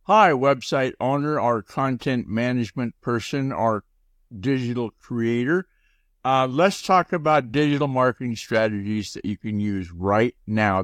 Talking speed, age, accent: 125 wpm, 60-79, American